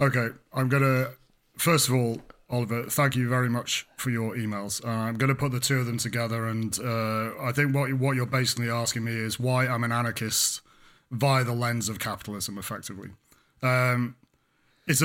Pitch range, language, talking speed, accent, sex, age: 115-135 Hz, English, 190 wpm, British, male, 30-49